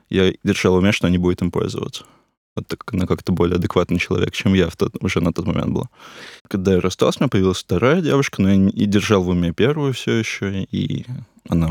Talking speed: 235 wpm